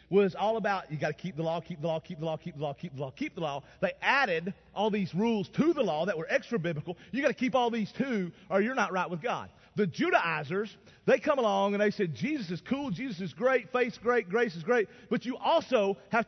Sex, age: male, 40-59